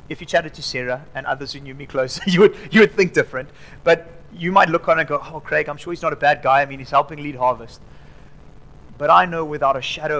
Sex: male